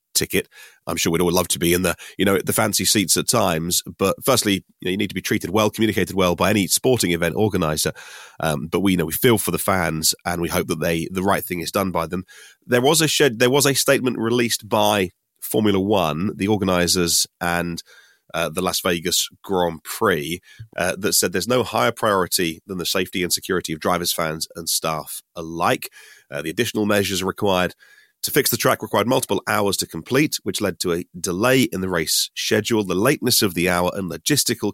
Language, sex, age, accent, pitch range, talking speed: English, male, 30-49, British, 85-105 Hz, 215 wpm